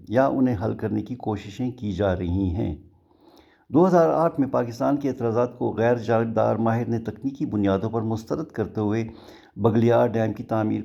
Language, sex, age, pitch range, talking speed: Urdu, male, 60-79, 105-130 Hz, 170 wpm